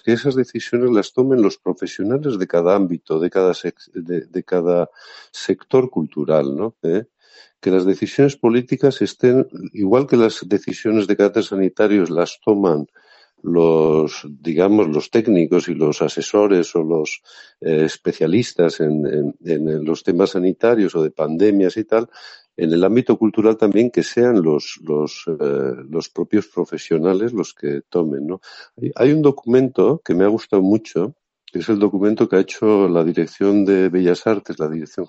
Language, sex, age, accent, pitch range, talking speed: Spanish, male, 60-79, Spanish, 85-120 Hz, 160 wpm